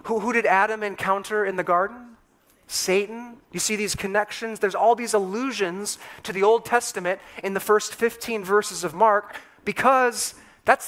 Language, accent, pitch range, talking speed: English, American, 160-225 Hz, 165 wpm